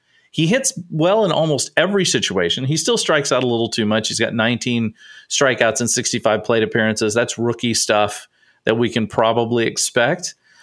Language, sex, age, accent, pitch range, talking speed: English, male, 40-59, American, 110-155 Hz, 175 wpm